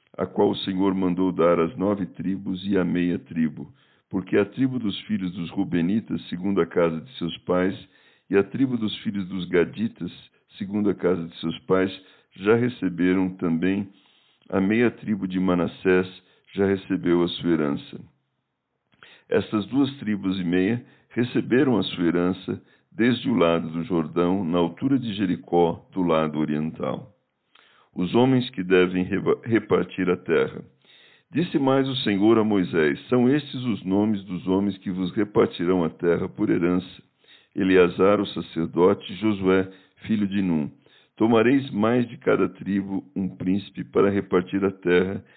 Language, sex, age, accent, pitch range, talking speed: Portuguese, male, 60-79, Brazilian, 90-105 Hz, 155 wpm